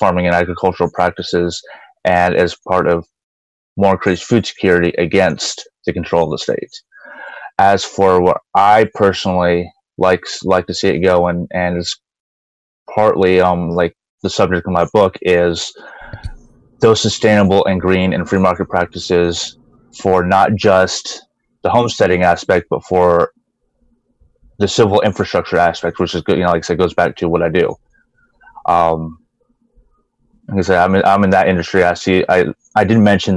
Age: 20-39